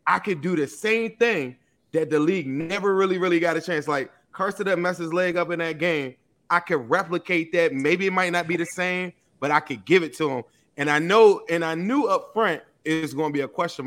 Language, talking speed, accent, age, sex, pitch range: English, 250 wpm, American, 20-39, male, 140-175 Hz